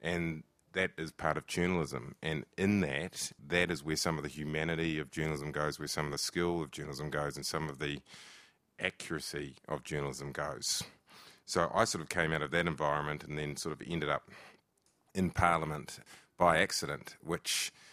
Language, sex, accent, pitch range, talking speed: English, male, Australian, 75-85 Hz, 185 wpm